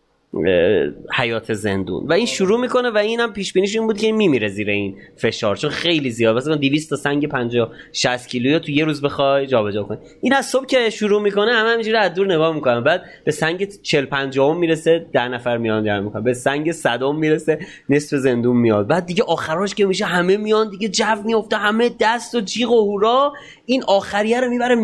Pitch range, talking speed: 125-205 Hz, 205 wpm